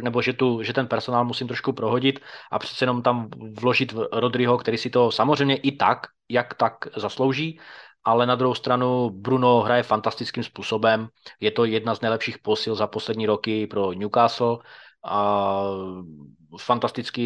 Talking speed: 155 wpm